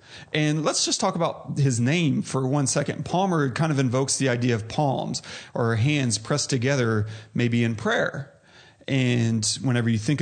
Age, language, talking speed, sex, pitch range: 30-49, English, 170 wpm, male, 120-145 Hz